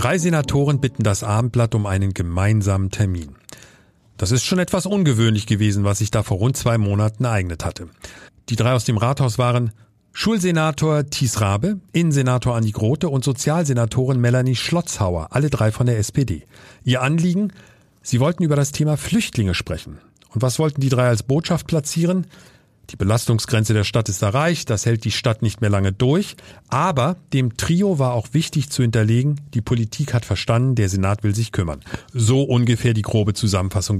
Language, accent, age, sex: German, German, 40-59, male